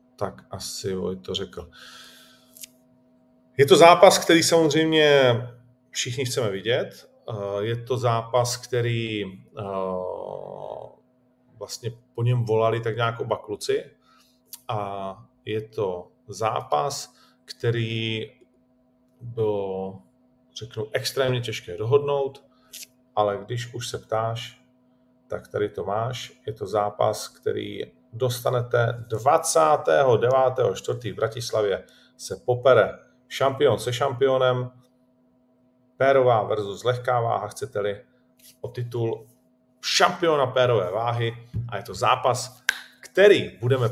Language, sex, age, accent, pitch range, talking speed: Czech, male, 40-59, native, 115-125 Hz, 100 wpm